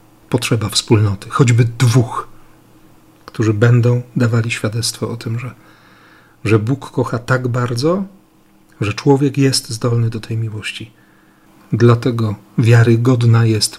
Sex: male